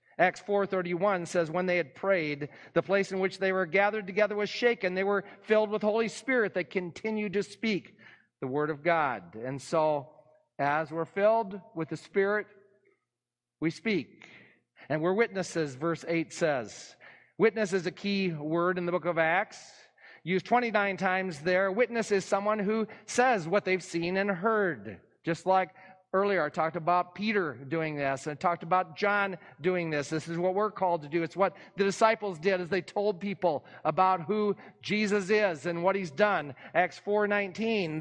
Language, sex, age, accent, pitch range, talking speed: English, male, 40-59, American, 160-205 Hz, 180 wpm